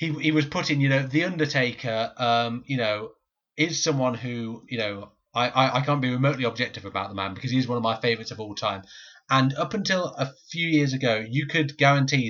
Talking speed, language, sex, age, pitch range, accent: 225 wpm, English, male, 30-49, 115-140 Hz, British